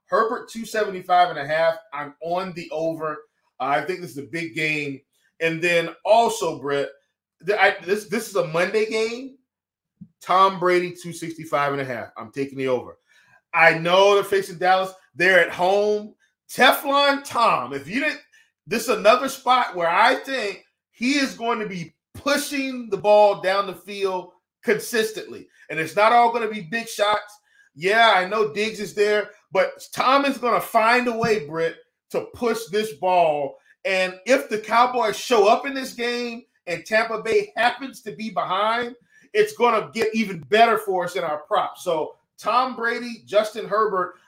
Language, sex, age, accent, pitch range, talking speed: English, male, 30-49, American, 165-230 Hz, 175 wpm